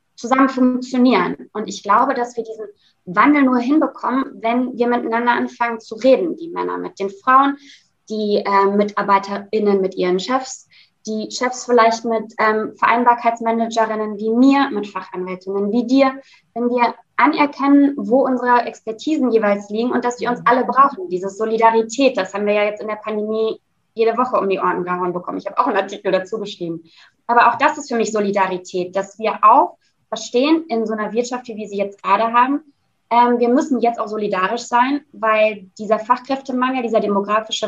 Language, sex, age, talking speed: German, female, 20-39, 175 wpm